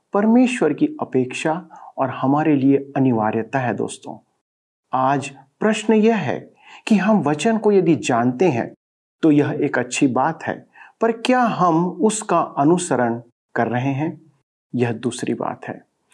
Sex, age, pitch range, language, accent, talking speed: male, 50-69, 120-170 Hz, Hindi, native, 140 wpm